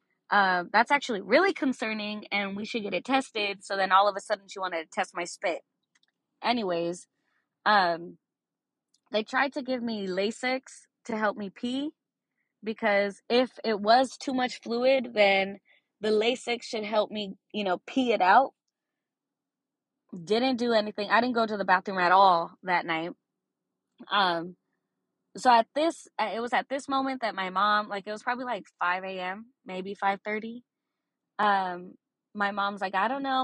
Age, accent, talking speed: 20-39, American, 170 wpm